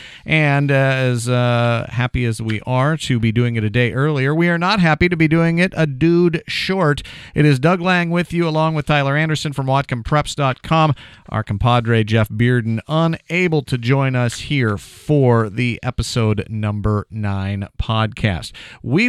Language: English